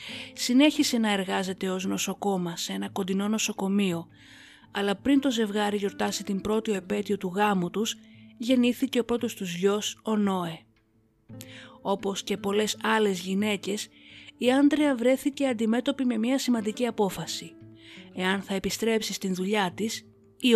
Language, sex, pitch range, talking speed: Greek, female, 175-230 Hz, 135 wpm